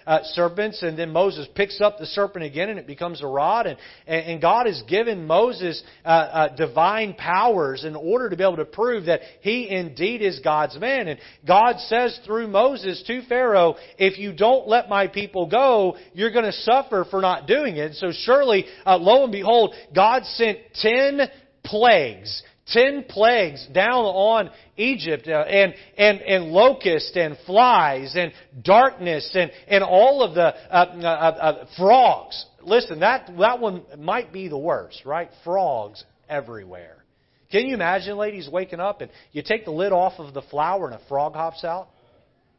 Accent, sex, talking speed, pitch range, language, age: American, male, 175 wpm, 160-210 Hz, English, 40-59